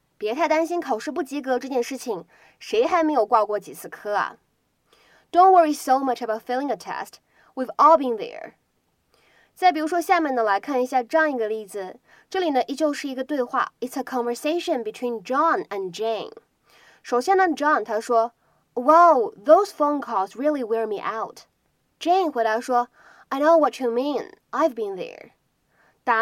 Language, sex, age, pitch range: Chinese, female, 20-39, 235-330 Hz